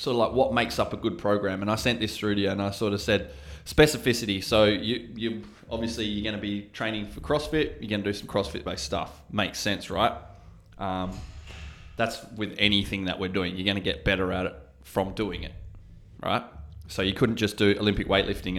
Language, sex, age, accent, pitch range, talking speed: English, male, 20-39, Australian, 90-105 Hz, 210 wpm